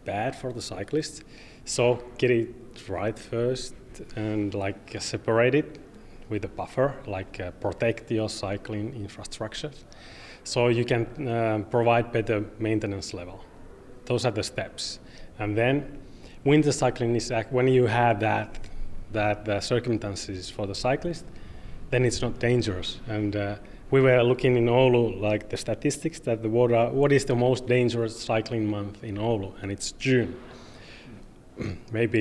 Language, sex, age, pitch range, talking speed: English, male, 30-49, 105-125 Hz, 150 wpm